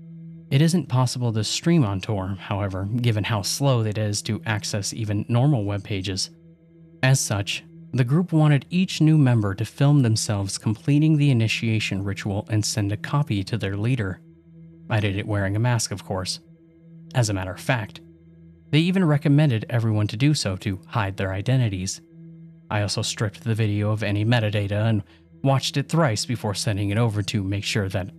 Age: 30-49